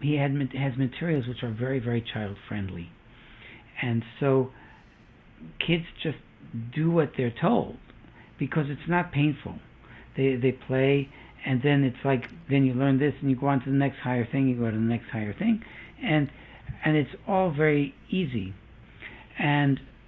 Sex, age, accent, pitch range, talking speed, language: male, 60-79, American, 110-135 Hz, 165 wpm, English